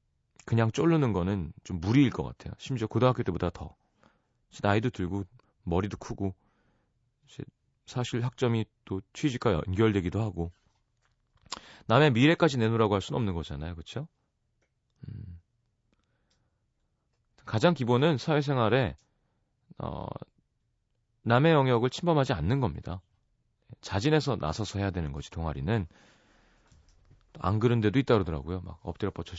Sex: male